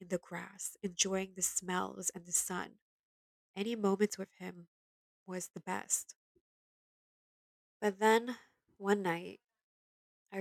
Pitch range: 165-190 Hz